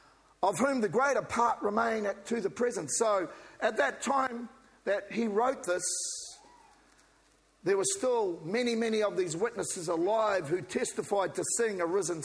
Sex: male